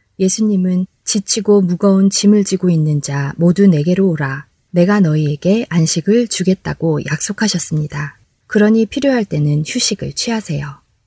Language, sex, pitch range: Korean, female, 155-210 Hz